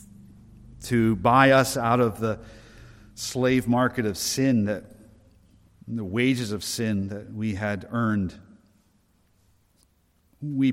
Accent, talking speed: American, 110 wpm